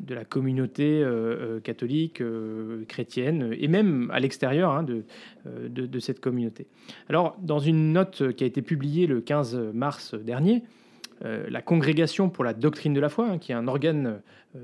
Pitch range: 125-175 Hz